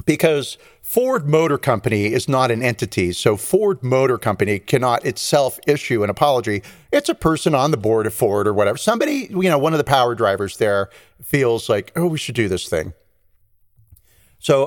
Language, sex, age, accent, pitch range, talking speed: English, male, 40-59, American, 105-140 Hz, 185 wpm